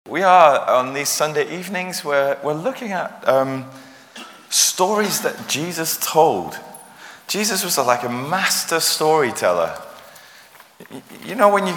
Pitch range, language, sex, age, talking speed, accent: 120-165 Hz, English, male, 30-49, 125 wpm, British